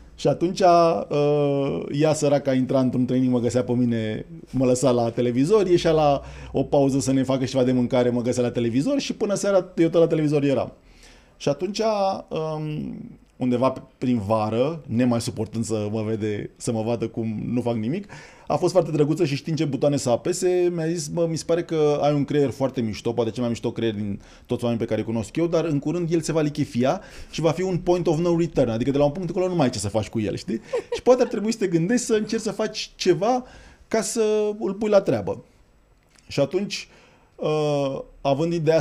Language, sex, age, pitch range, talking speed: Romanian, male, 20-39, 115-165 Hz, 225 wpm